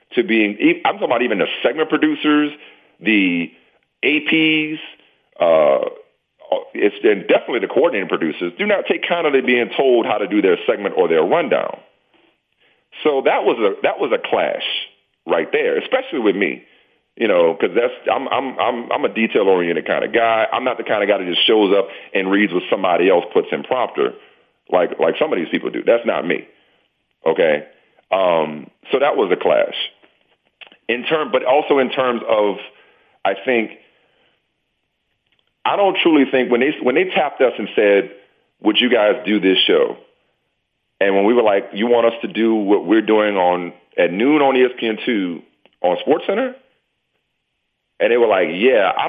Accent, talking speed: American, 180 wpm